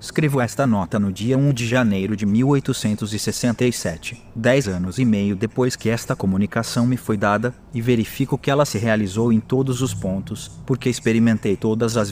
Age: 30-49